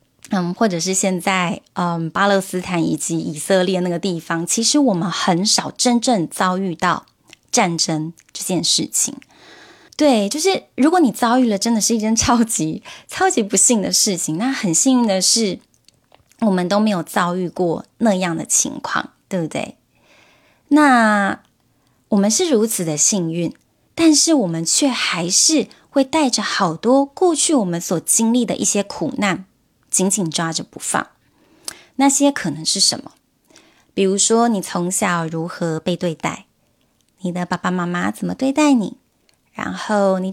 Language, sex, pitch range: Chinese, female, 180-245 Hz